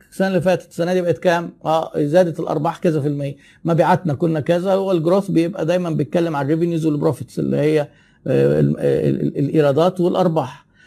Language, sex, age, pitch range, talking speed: Arabic, male, 50-69, 150-185 Hz, 150 wpm